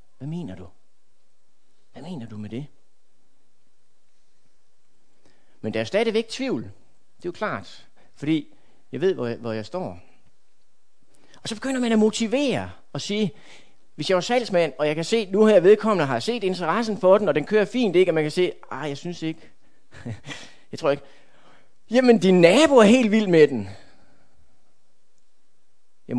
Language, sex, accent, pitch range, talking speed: Danish, male, native, 125-210 Hz, 175 wpm